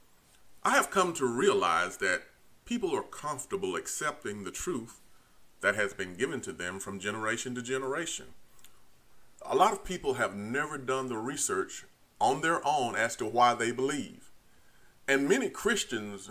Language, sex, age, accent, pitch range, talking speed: English, male, 30-49, American, 125-185 Hz, 155 wpm